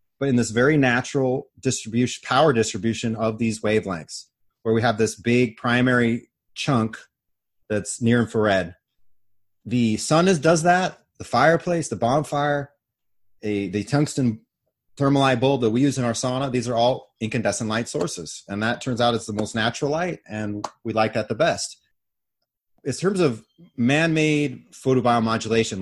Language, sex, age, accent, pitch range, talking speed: English, male, 30-49, American, 110-140 Hz, 160 wpm